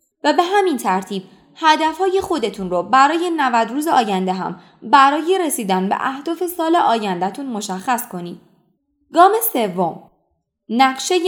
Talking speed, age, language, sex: 120 wpm, 20-39, Persian, female